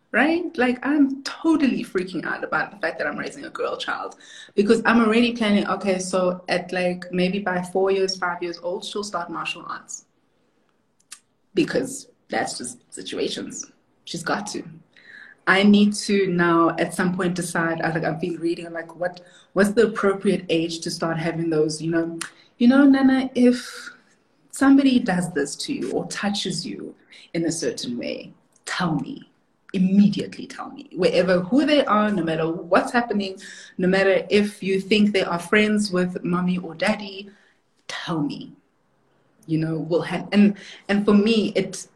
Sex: female